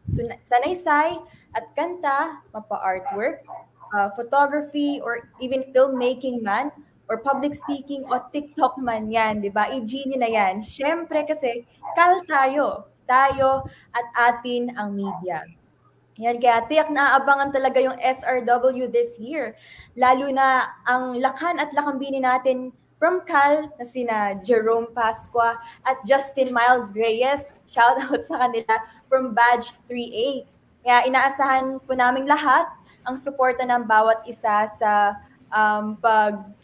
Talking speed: 125 wpm